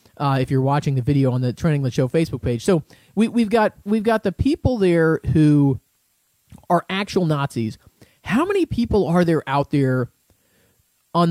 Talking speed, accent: 180 wpm, American